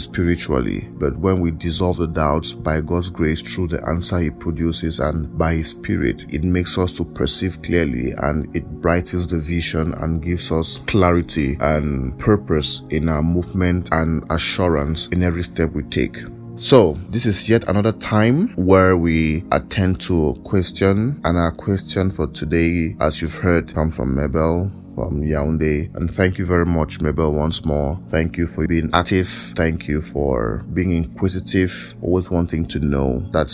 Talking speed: 170 wpm